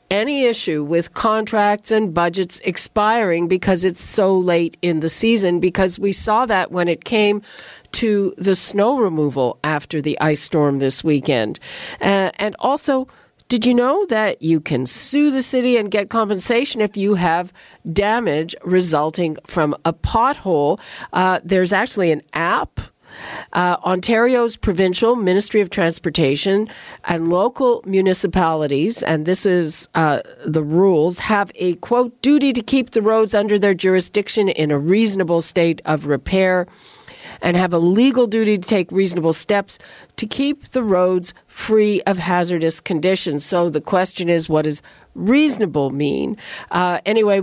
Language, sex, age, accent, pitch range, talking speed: English, female, 50-69, American, 170-215 Hz, 150 wpm